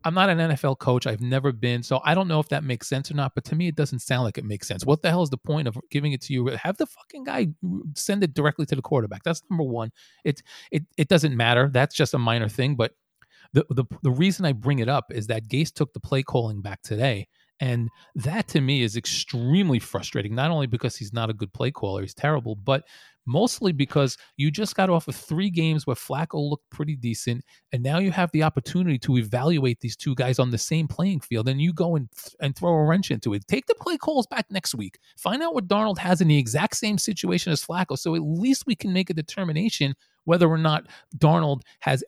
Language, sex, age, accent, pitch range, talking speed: English, male, 30-49, American, 125-170 Hz, 245 wpm